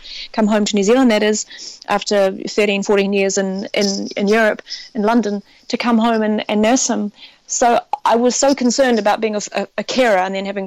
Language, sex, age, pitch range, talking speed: English, female, 30-49, 200-235 Hz, 210 wpm